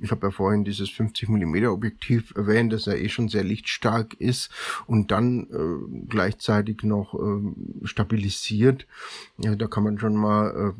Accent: German